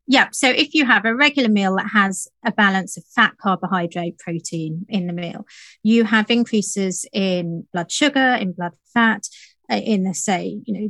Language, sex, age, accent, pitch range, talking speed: English, female, 30-49, British, 185-225 Hz, 185 wpm